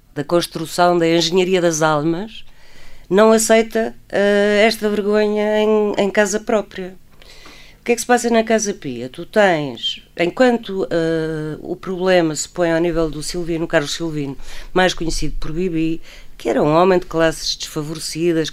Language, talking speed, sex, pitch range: Portuguese, 160 wpm, female, 155-195 Hz